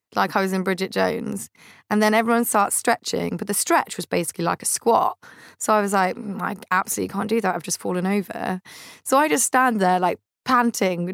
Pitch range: 180-220 Hz